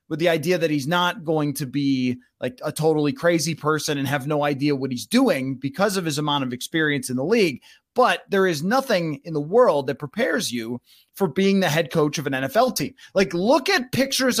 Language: English